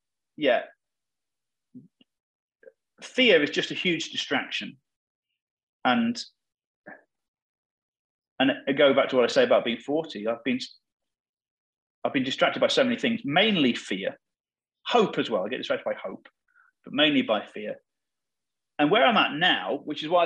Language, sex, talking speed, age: English, male, 150 wpm, 30-49